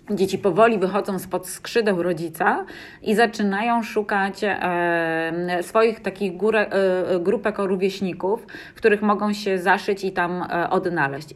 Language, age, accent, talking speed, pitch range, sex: Polish, 30-49, native, 120 wpm, 170-210 Hz, female